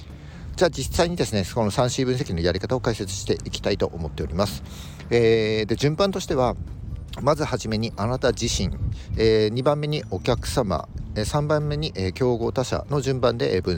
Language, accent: Japanese, native